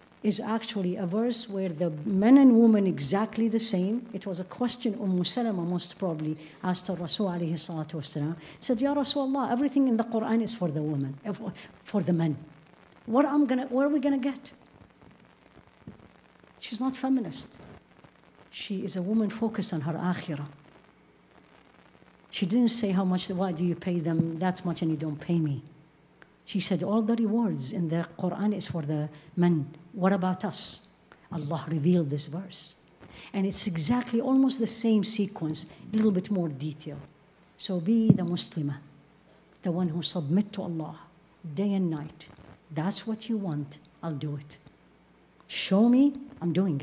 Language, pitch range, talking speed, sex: English, 165-225 Hz, 165 wpm, female